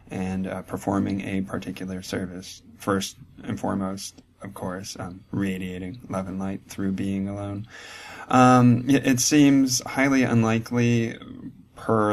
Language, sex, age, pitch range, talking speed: English, male, 20-39, 95-105 Hz, 125 wpm